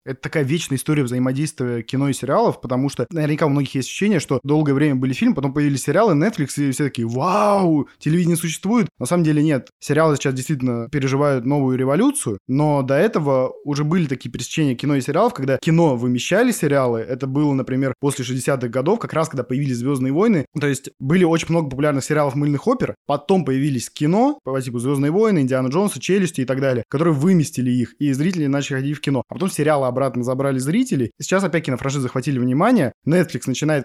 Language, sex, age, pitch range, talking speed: Russian, male, 20-39, 130-160 Hz, 195 wpm